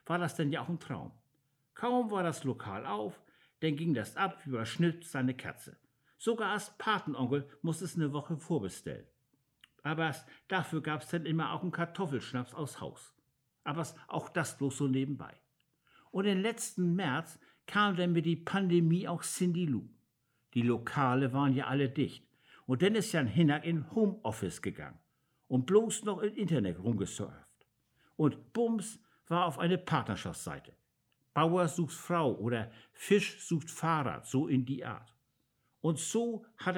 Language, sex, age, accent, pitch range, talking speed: German, male, 60-79, German, 135-180 Hz, 160 wpm